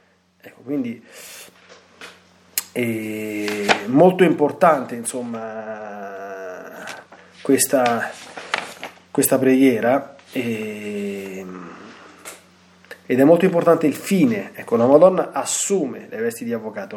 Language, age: Italian, 30-49